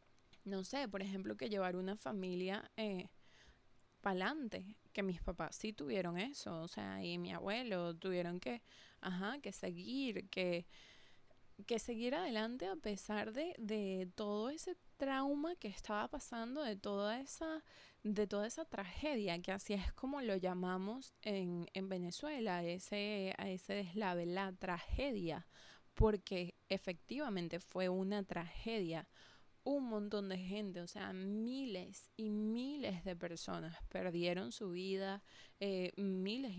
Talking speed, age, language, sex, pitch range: 140 wpm, 20-39, English, female, 180-215 Hz